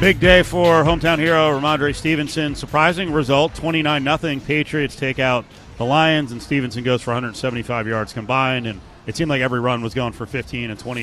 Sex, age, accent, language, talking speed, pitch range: male, 40-59, American, English, 185 wpm, 120-155 Hz